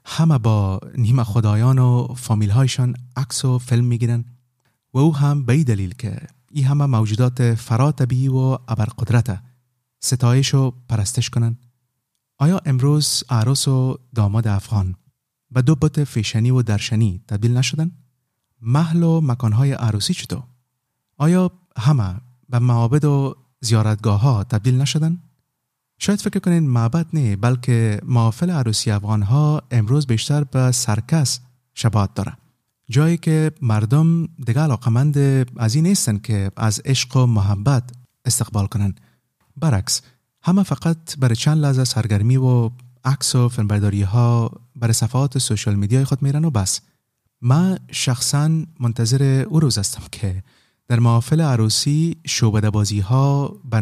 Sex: male